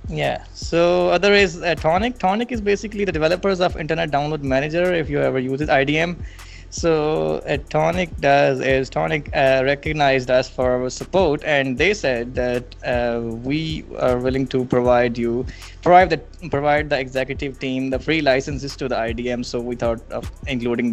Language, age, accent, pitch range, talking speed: English, 20-39, Indian, 125-155 Hz, 180 wpm